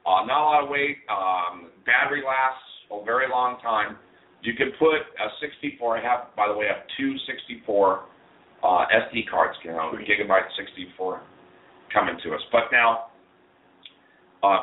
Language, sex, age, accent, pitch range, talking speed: English, male, 40-59, American, 95-135 Hz, 165 wpm